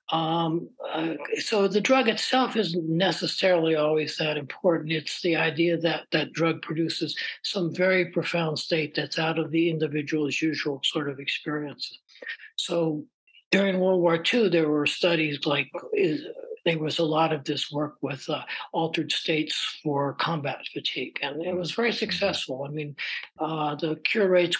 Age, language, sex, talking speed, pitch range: 60-79, English, male, 160 wpm, 150-180 Hz